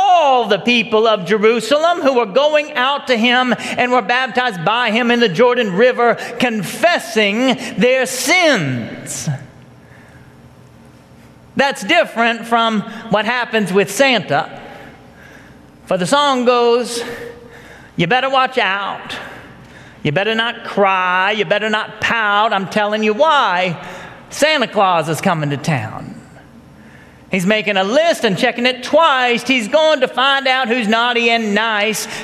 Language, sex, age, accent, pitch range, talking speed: English, male, 40-59, American, 215-280 Hz, 135 wpm